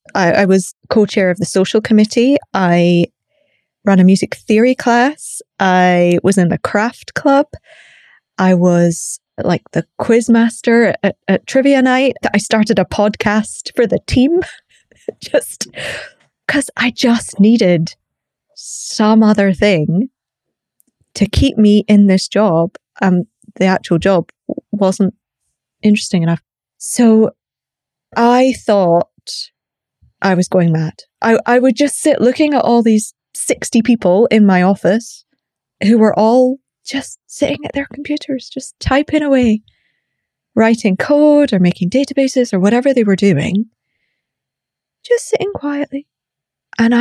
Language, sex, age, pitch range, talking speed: English, female, 20-39, 195-260 Hz, 130 wpm